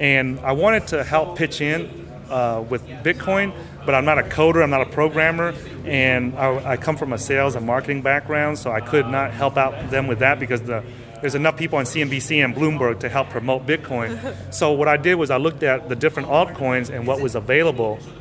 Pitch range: 120-150 Hz